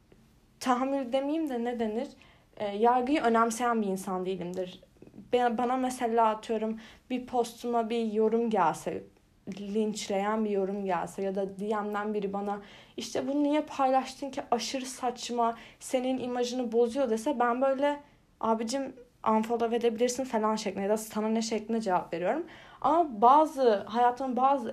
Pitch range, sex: 215-270 Hz, female